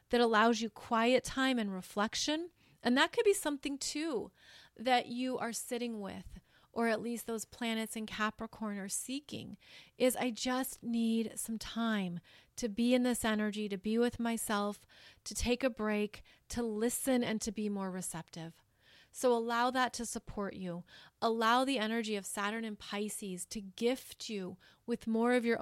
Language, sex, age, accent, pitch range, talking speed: English, female, 30-49, American, 210-245 Hz, 170 wpm